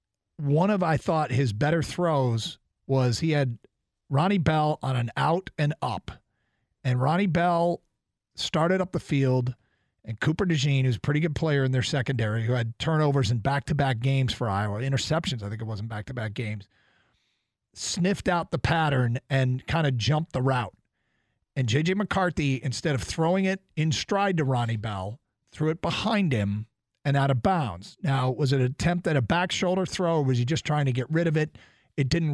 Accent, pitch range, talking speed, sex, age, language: American, 125-165 Hz, 190 wpm, male, 50-69, English